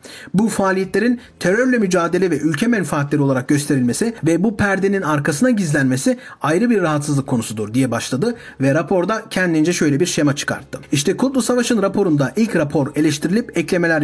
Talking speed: 150 wpm